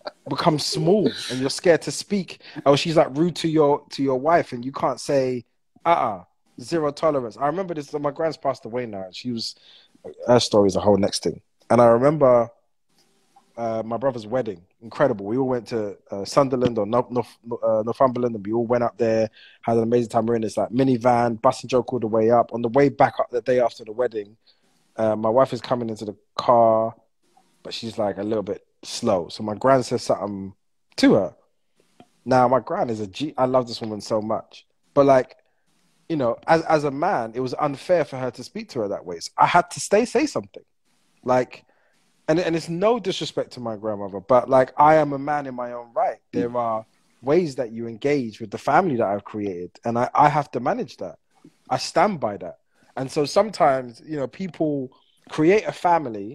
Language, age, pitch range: English, 20-39, 115-145 Hz